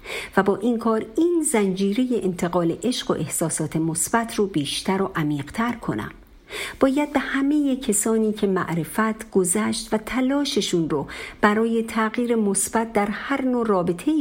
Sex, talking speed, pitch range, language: female, 140 wpm, 170-240 Hz, Persian